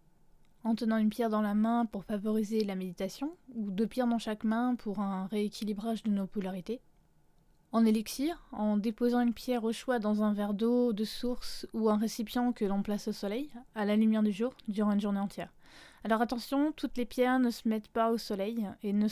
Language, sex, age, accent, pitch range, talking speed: French, female, 20-39, French, 200-235 Hz, 210 wpm